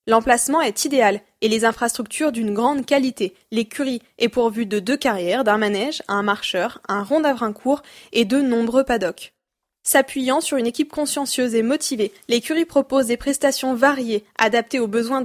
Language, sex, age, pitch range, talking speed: French, female, 20-39, 225-275 Hz, 165 wpm